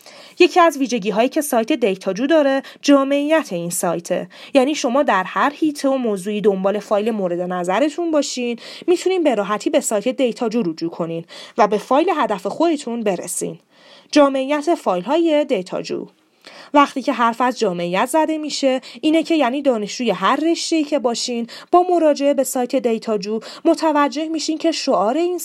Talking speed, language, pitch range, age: 150 wpm, Persian, 210-290 Hz, 30-49